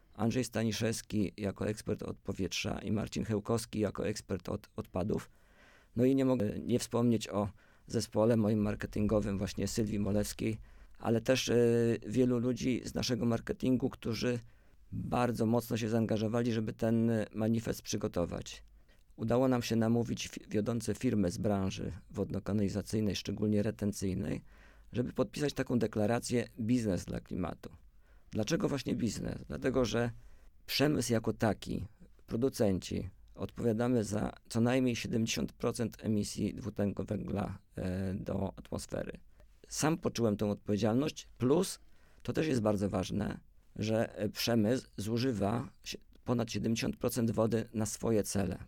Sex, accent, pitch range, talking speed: male, native, 100-120 Hz, 120 wpm